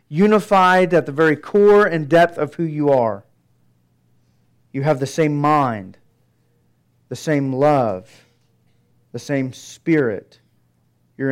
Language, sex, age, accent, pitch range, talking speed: English, male, 40-59, American, 120-160 Hz, 120 wpm